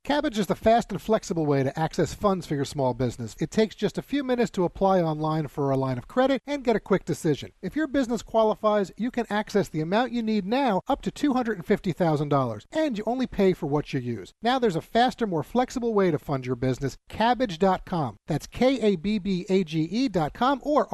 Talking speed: 205 wpm